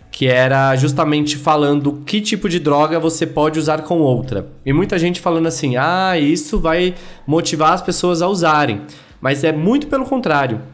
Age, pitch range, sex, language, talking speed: 20-39, 125-180 Hz, male, Portuguese, 175 wpm